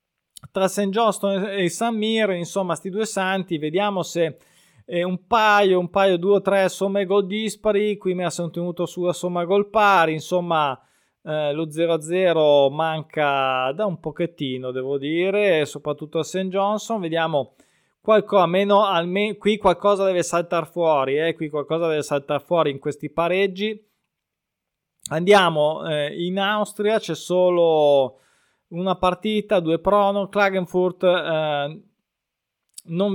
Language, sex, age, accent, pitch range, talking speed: Italian, male, 20-39, native, 160-200 Hz, 140 wpm